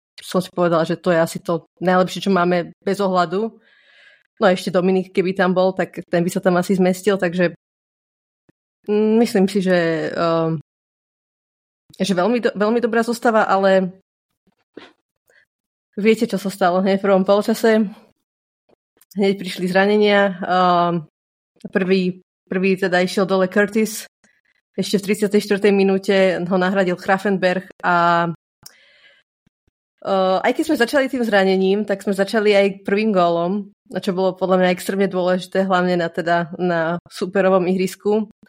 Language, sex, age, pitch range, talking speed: Slovak, female, 20-39, 180-210 Hz, 135 wpm